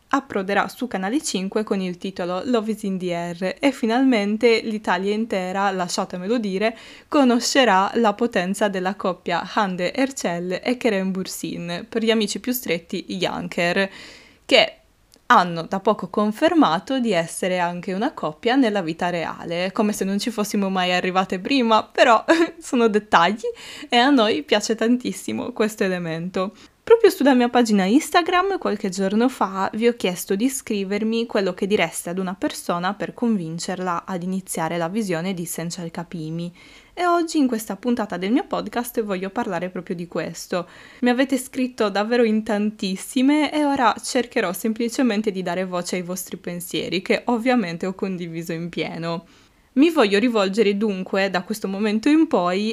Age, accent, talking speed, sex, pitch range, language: 20-39, native, 155 wpm, female, 185-235 Hz, Italian